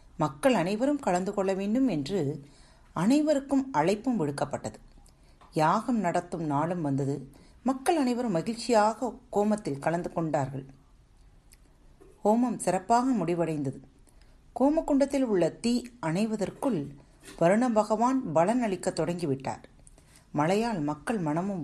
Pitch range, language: 150-225 Hz, Tamil